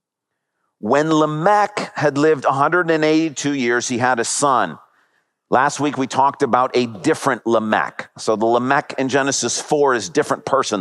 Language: English